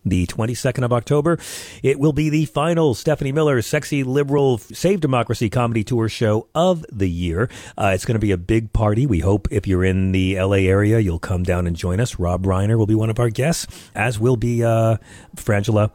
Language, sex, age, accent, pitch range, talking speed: English, male, 40-59, American, 100-130 Hz, 215 wpm